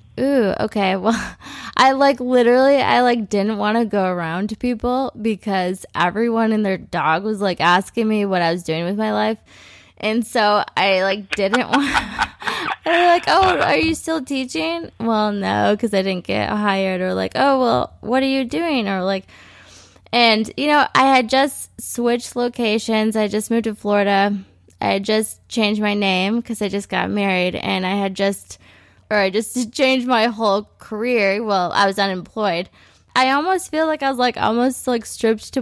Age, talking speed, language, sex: 20-39, 190 wpm, English, female